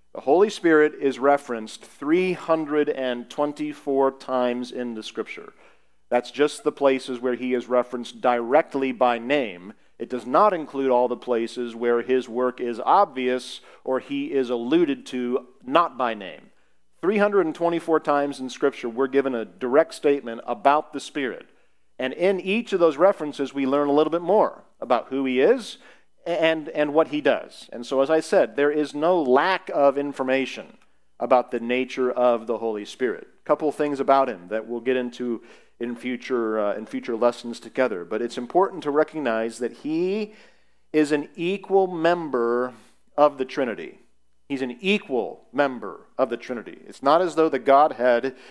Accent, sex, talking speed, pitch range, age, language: American, male, 165 wpm, 120-150 Hz, 50-69, English